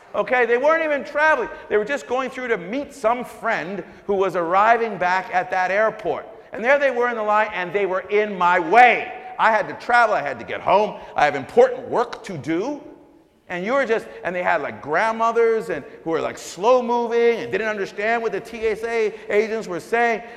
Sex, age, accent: male, 50-69, American